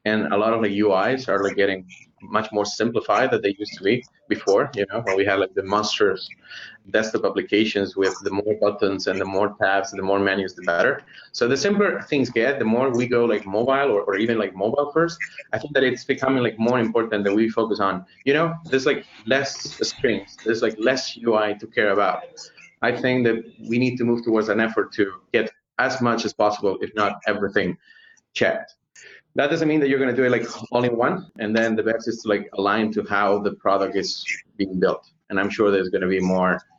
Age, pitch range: 30-49, 100-125 Hz